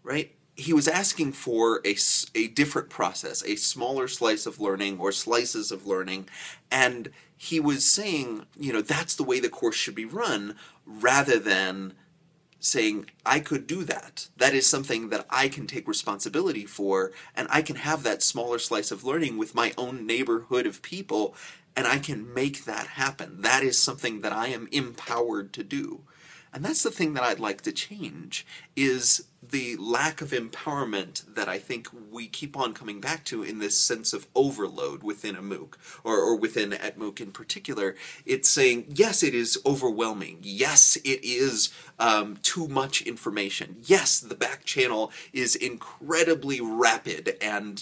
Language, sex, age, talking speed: English, male, 30-49, 170 wpm